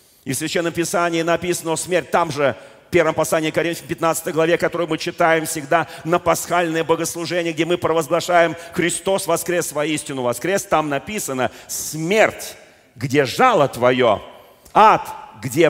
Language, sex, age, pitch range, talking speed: Russian, male, 40-59, 120-170 Hz, 140 wpm